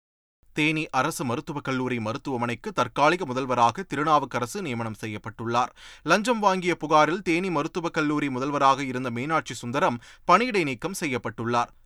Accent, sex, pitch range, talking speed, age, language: native, male, 125-175 Hz, 115 wpm, 30-49, Tamil